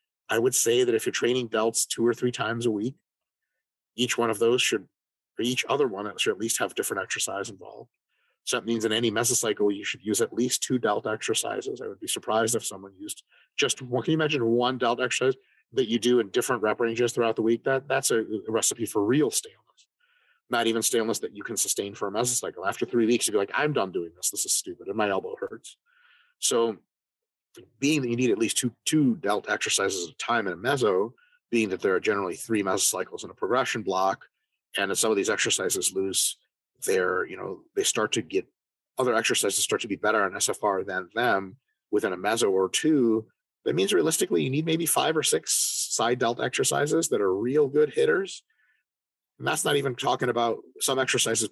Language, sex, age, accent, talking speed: English, male, 30-49, American, 215 wpm